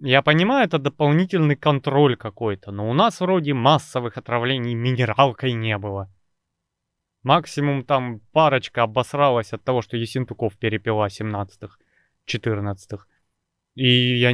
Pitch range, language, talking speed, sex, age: 115-150 Hz, Russian, 115 wpm, male, 20-39